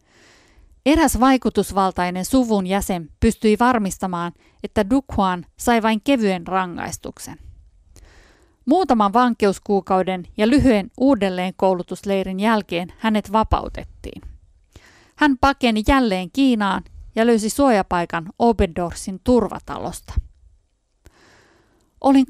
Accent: native